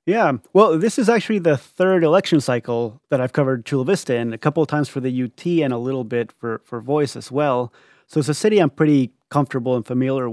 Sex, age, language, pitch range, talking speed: male, 30-49, English, 120-150 Hz, 235 wpm